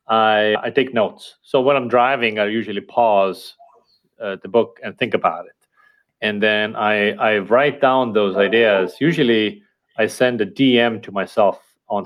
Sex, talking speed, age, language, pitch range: male, 170 wpm, 30-49, English, 105-130 Hz